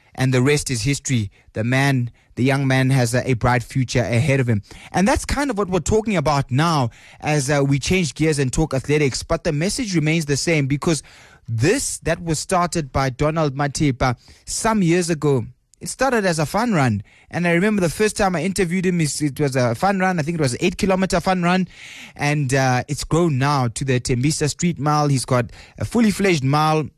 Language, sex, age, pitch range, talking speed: English, male, 20-39, 130-165 Hz, 210 wpm